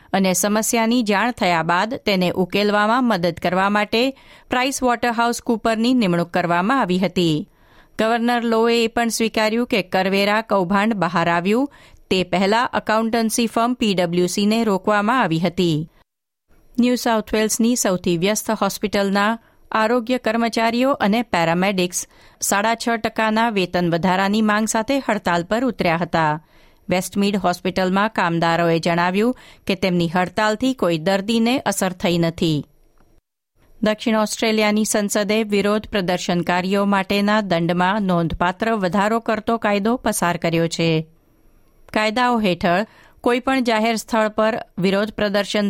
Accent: native